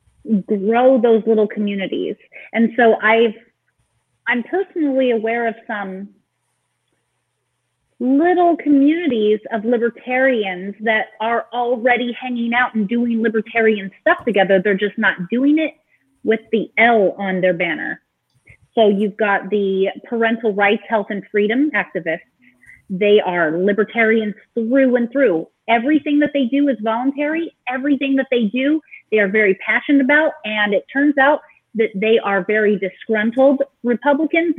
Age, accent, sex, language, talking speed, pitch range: 30-49, American, female, English, 135 wpm, 205-260 Hz